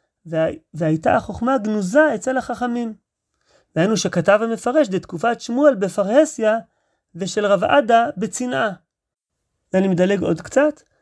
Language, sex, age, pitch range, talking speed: Hebrew, male, 30-49, 185-255 Hz, 115 wpm